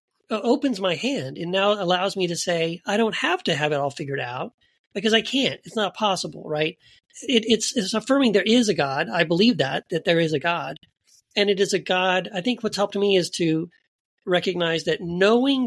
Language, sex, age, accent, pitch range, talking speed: English, male, 40-59, American, 160-200 Hz, 215 wpm